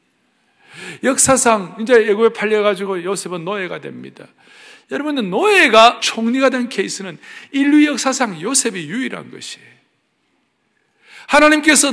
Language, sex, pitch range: Korean, male, 195-265 Hz